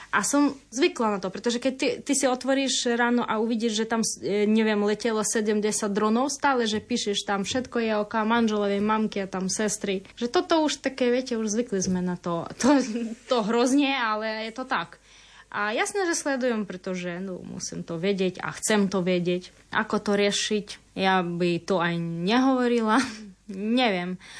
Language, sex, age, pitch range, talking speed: Slovak, female, 20-39, 190-235 Hz, 175 wpm